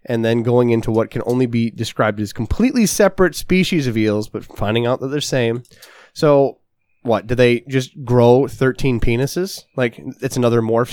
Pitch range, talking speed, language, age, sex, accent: 115-155 Hz, 185 wpm, English, 20-39, male, American